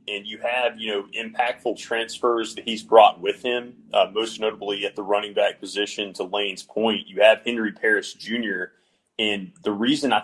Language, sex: English, male